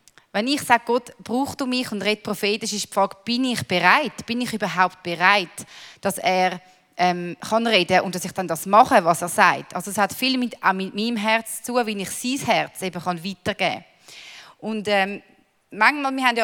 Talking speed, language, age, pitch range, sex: 195 wpm, English, 30-49, 190-240 Hz, female